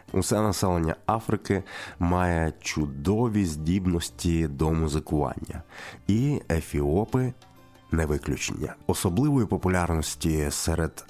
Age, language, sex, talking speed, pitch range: 30-49, Ukrainian, male, 85 wpm, 80-95 Hz